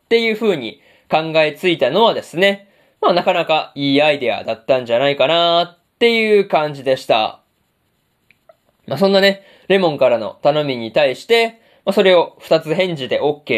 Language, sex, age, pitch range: Japanese, male, 20-39, 140-200 Hz